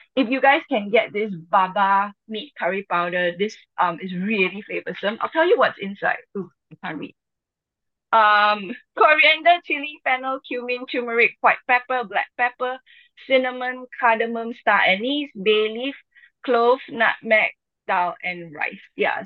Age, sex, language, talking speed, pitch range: 10-29, female, English, 145 wpm, 200-280 Hz